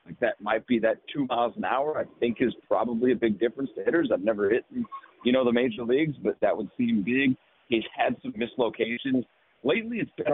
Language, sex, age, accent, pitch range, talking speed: English, male, 40-59, American, 105-125 Hz, 220 wpm